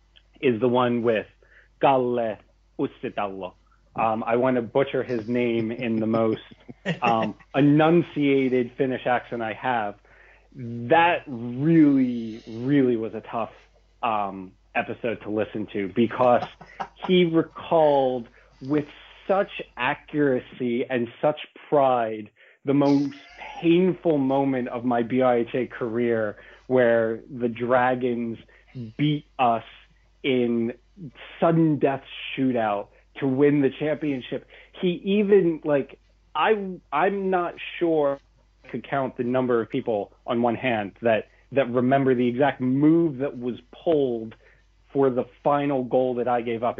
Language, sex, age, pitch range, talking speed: English, male, 30-49, 115-145 Hz, 125 wpm